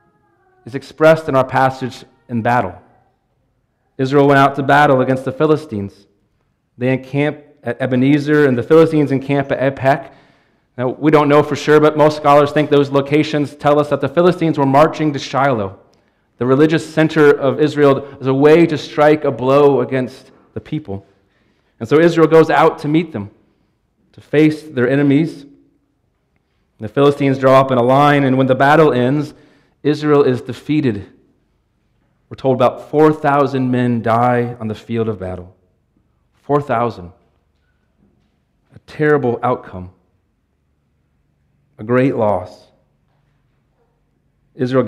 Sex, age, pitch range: male, 30-49, 120-150 Hz